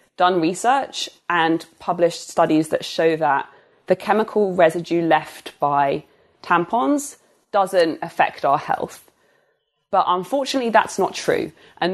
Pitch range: 165-210 Hz